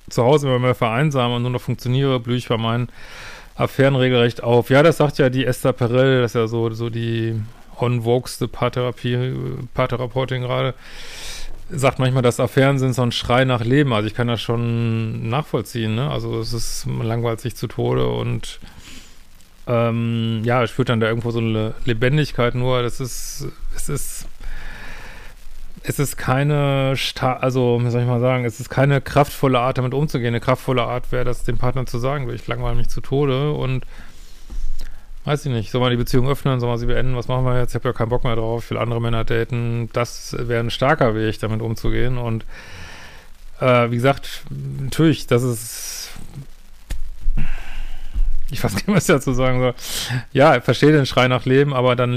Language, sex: German, male